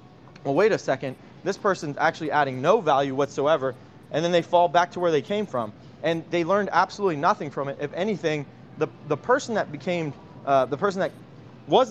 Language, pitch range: English, 130-185 Hz